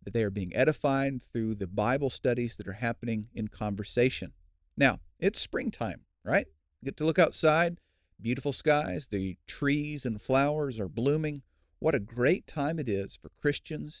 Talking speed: 165 wpm